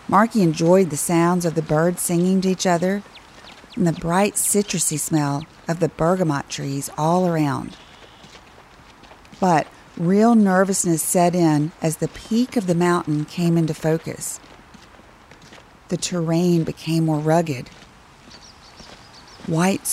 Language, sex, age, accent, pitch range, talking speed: English, female, 40-59, American, 155-190 Hz, 125 wpm